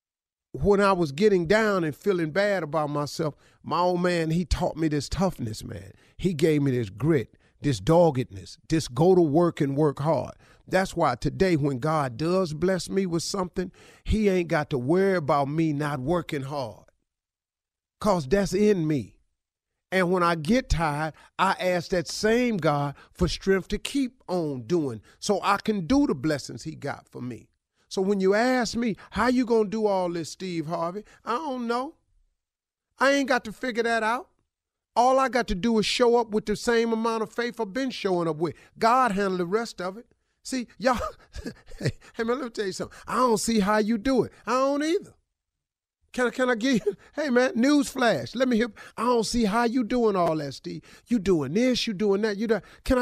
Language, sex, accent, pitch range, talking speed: English, male, American, 165-240 Hz, 205 wpm